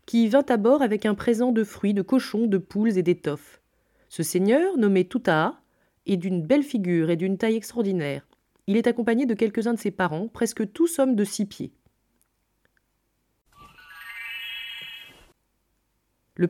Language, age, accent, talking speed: French, 30-49, French, 155 wpm